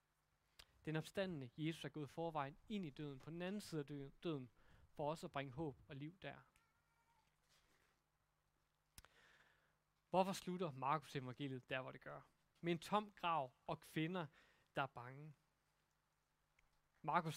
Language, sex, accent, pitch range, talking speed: Danish, male, native, 140-185 Hz, 140 wpm